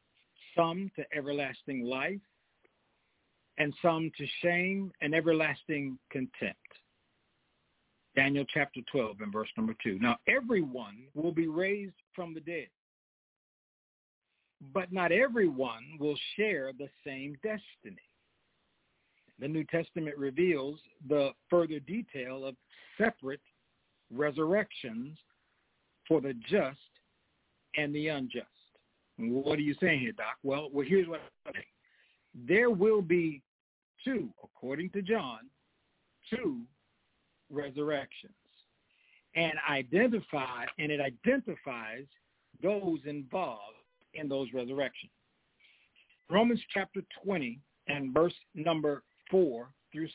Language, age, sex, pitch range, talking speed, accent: English, 60-79, male, 140-185 Hz, 105 wpm, American